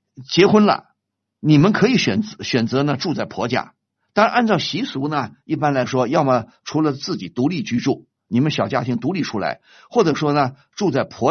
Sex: male